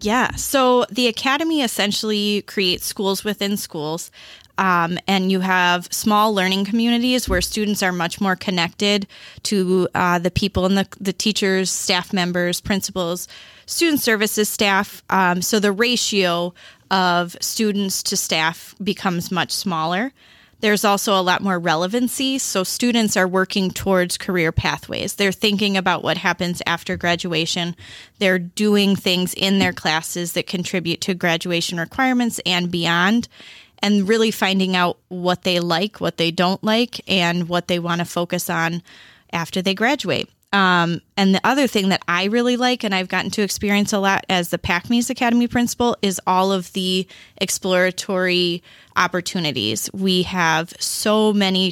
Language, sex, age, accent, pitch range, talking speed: English, female, 20-39, American, 175-205 Hz, 155 wpm